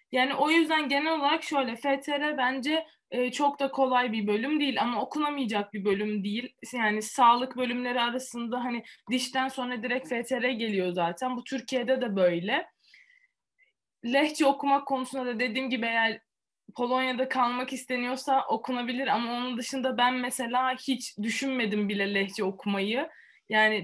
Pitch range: 210-270 Hz